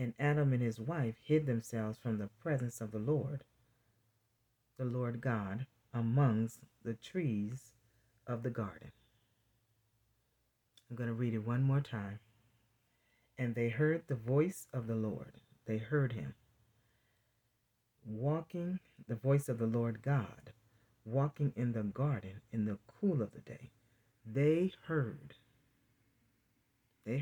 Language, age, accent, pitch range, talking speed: English, 40-59, American, 115-135 Hz, 135 wpm